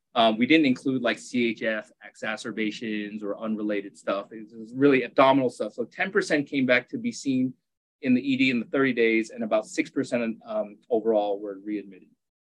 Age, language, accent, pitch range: 30-49, English, American, 110-160 Hz